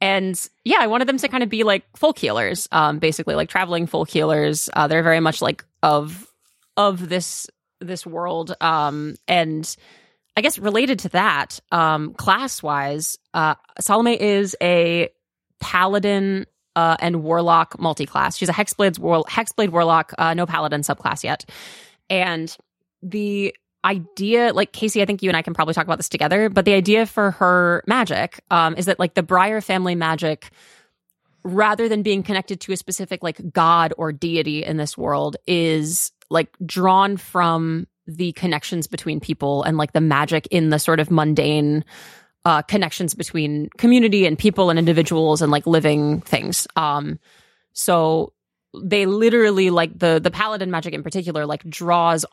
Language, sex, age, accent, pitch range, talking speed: English, female, 20-39, American, 160-195 Hz, 165 wpm